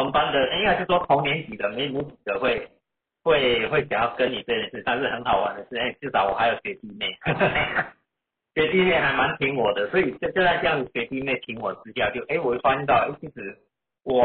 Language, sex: Chinese, male